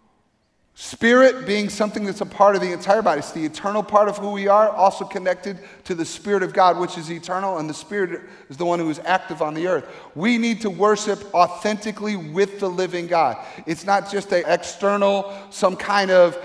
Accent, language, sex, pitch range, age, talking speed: American, English, male, 170-205 Hz, 40-59, 210 wpm